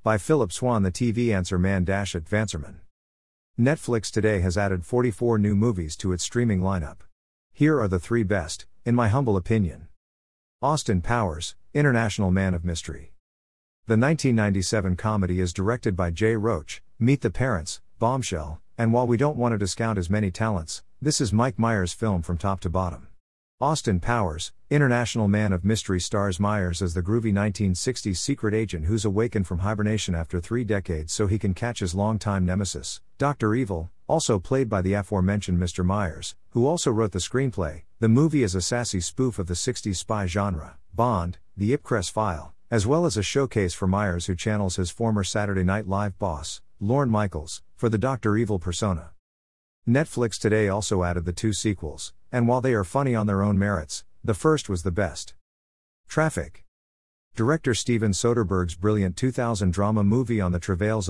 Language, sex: English, male